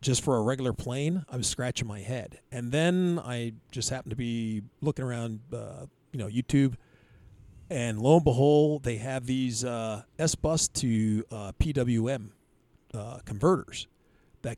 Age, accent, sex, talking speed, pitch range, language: 40-59, American, male, 160 wpm, 110-135 Hz, English